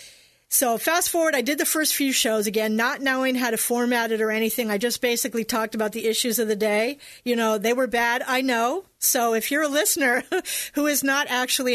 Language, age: English, 40-59